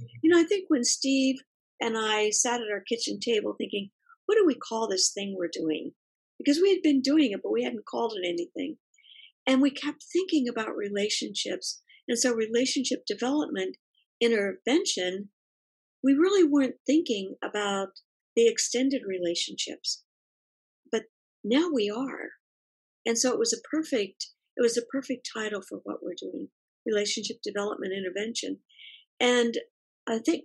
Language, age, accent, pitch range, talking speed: English, 50-69, American, 210-295 Hz, 155 wpm